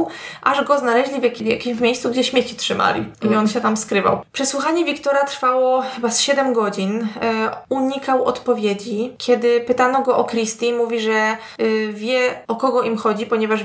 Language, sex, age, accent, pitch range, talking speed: Polish, female, 20-39, native, 210-240 Hz, 170 wpm